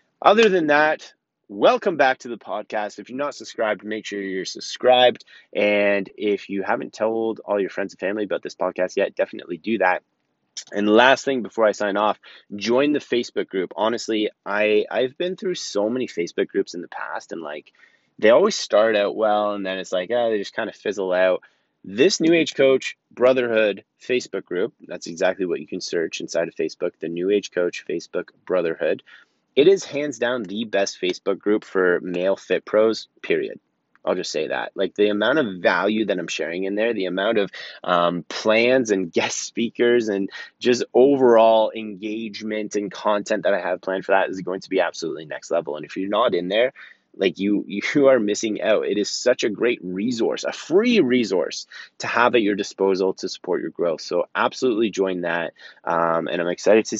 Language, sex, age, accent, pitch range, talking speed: English, male, 30-49, American, 100-130 Hz, 200 wpm